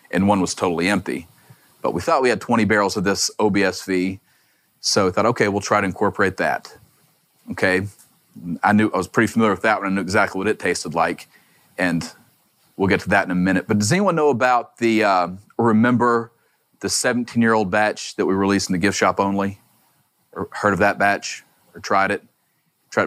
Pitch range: 95-115 Hz